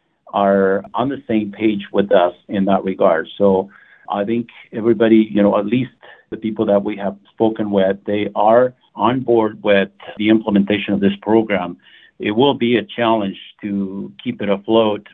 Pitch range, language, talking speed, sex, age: 100-115 Hz, English, 175 wpm, male, 50-69